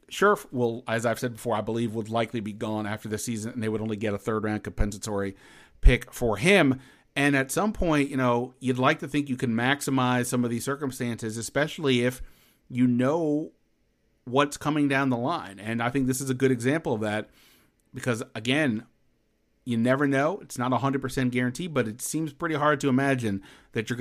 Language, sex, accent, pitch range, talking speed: English, male, American, 120-140 Hz, 200 wpm